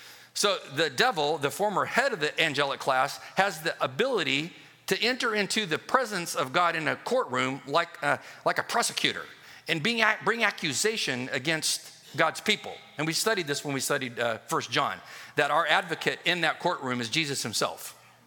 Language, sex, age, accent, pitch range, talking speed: English, male, 50-69, American, 140-200 Hz, 175 wpm